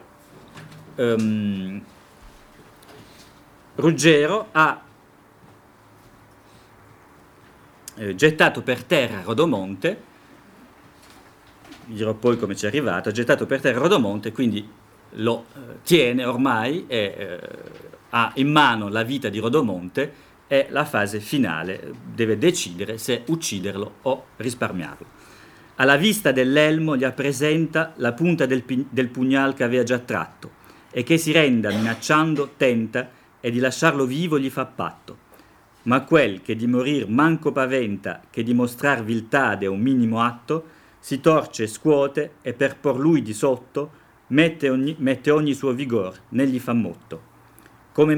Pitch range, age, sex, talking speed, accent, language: 110-145 Hz, 50-69, male, 130 wpm, native, Italian